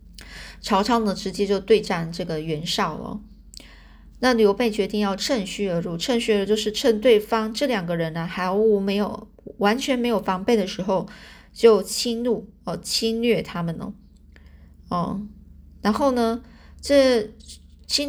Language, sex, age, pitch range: Chinese, female, 20-39, 185-225 Hz